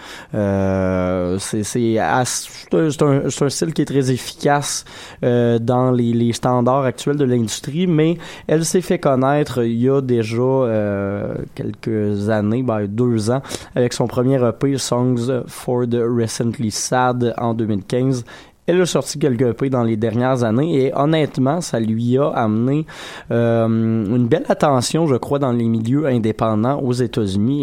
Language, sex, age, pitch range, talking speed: French, male, 20-39, 115-145 Hz, 160 wpm